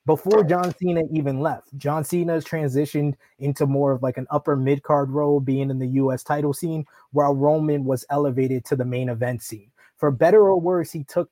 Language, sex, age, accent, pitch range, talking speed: English, male, 20-39, American, 135-160 Hz, 195 wpm